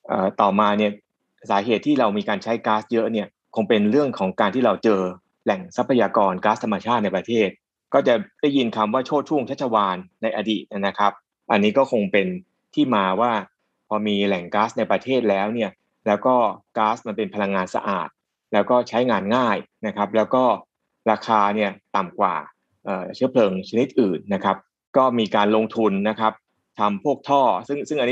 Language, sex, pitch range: Thai, male, 100-125 Hz